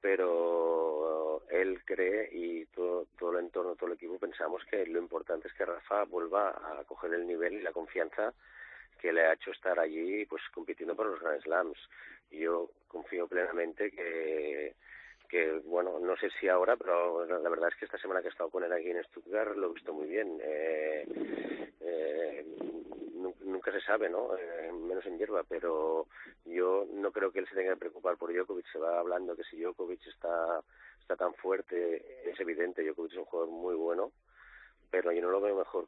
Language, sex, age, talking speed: Spanish, male, 30-49, 190 wpm